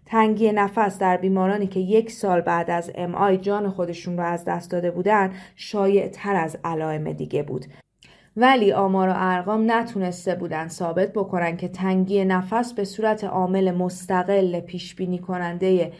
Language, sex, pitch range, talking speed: Persian, female, 185-215 Hz, 150 wpm